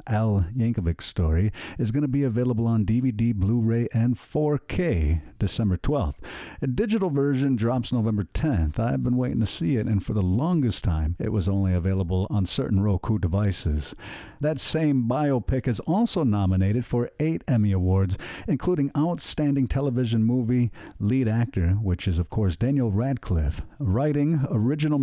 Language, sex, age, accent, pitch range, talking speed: English, male, 50-69, American, 100-135 Hz, 155 wpm